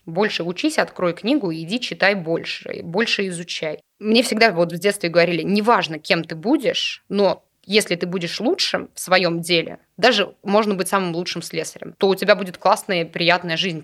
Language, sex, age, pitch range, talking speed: Russian, female, 20-39, 175-210 Hz, 175 wpm